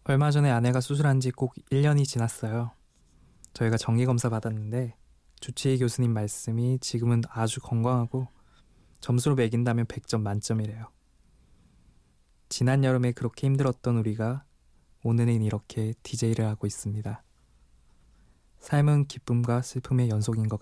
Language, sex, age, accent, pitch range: Korean, male, 20-39, native, 105-125 Hz